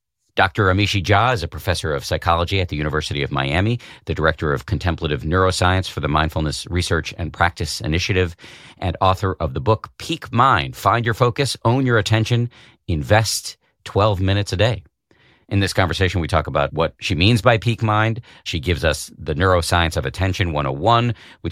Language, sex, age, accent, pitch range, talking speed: English, male, 50-69, American, 85-110 Hz, 180 wpm